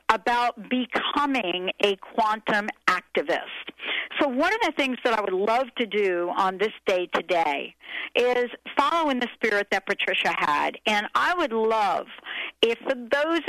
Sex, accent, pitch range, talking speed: female, American, 205-270 Hz, 150 wpm